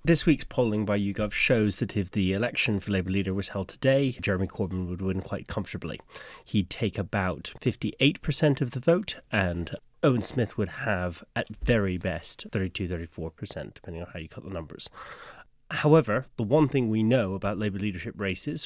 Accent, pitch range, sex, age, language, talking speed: British, 95-115 Hz, male, 30-49, English, 175 wpm